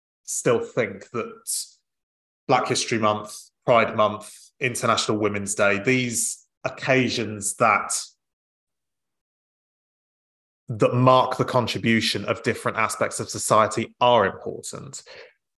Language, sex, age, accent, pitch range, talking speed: English, male, 20-39, British, 105-125 Hz, 95 wpm